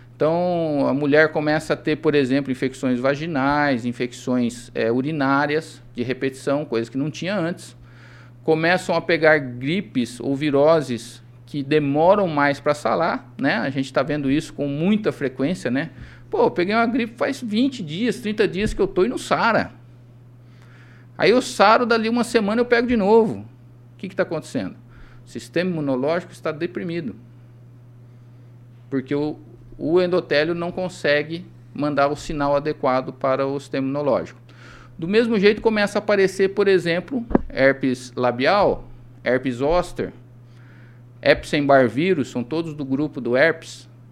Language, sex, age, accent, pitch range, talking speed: Portuguese, male, 50-69, Brazilian, 120-165 Hz, 150 wpm